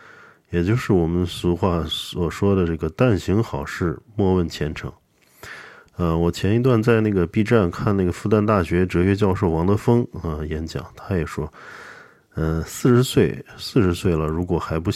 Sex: male